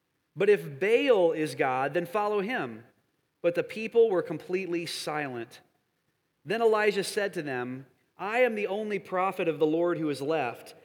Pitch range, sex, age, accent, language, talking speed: 170-240 Hz, male, 30-49, American, English, 165 wpm